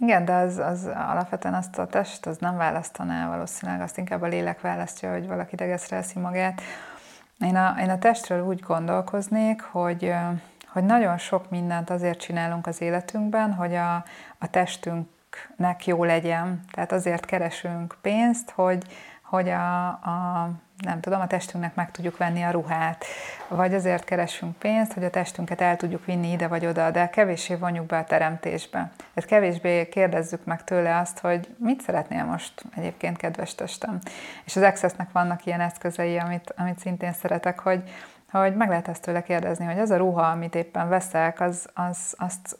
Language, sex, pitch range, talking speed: Hungarian, female, 170-185 Hz, 170 wpm